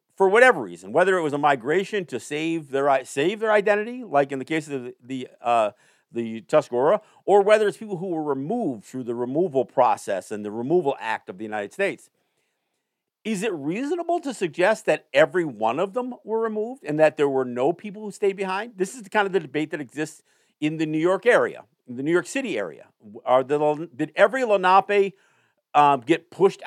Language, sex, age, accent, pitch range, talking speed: English, male, 50-69, American, 135-195 Hz, 205 wpm